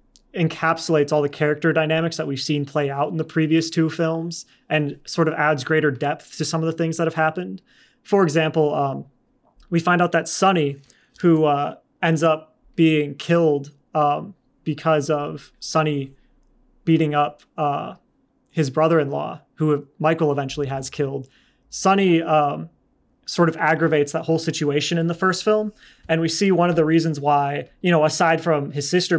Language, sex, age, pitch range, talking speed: English, male, 30-49, 145-165 Hz, 170 wpm